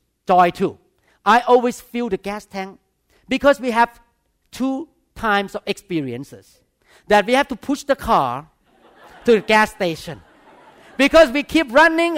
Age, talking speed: 50-69, 150 wpm